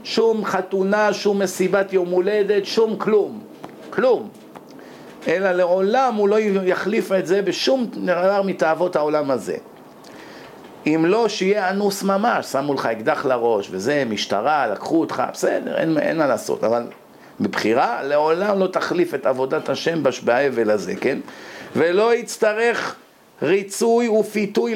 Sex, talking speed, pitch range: male, 130 wpm, 170-210 Hz